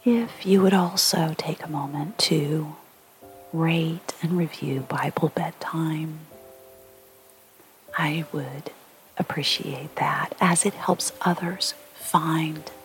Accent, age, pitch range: American, 40-59, 130-180 Hz